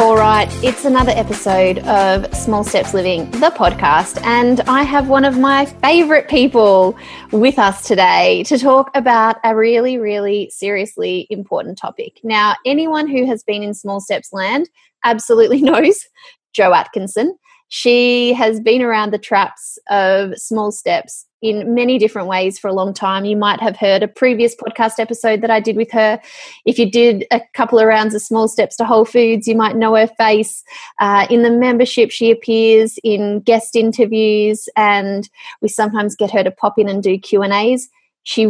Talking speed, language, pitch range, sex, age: 175 wpm, English, 205-250 Hz, female, 20-39